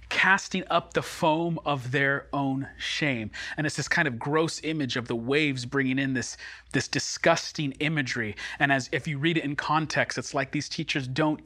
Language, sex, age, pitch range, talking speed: English, male, 30-49, 135-170 Hz, 195 wpm